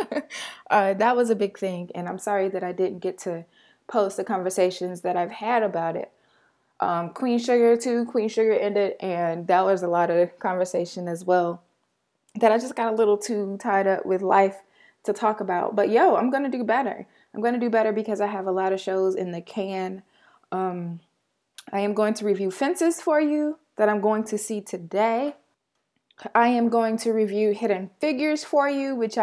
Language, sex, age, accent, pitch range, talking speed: English, female, 20-39, American, 185-230 Hz, 200 wpm